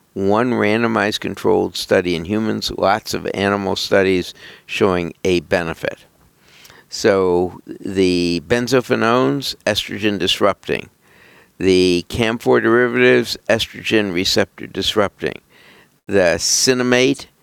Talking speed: 90 wpm